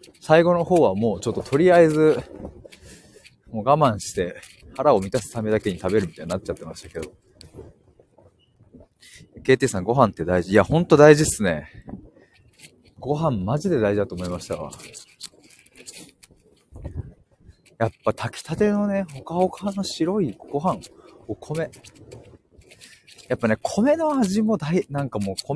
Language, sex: Japanese, male